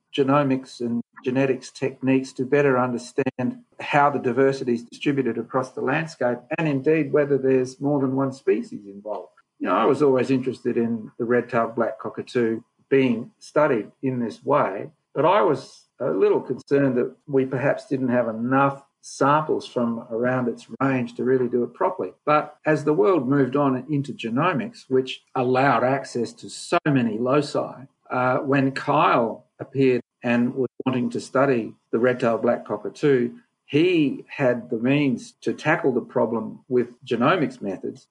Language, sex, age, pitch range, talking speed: English, male, 50-69, 120-135 Hz, 160 wpm